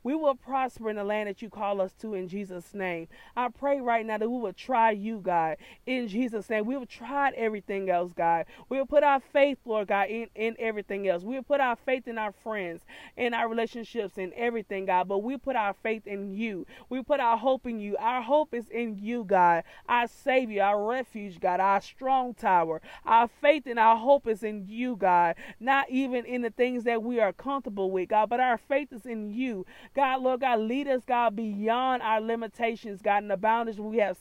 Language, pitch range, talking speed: English, 200-250 Hz, 220 wpm